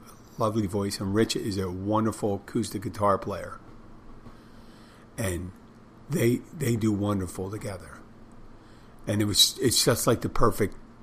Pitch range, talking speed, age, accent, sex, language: 105-120 Hz, 130 wpm, 50-69, American, male, English